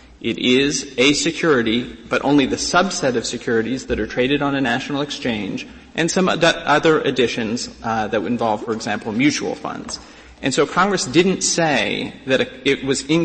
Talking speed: 170 wpm